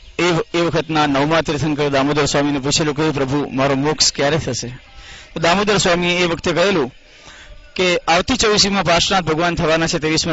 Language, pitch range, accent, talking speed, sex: Gujarati, 150-185 Hz, native, 130 wpm, male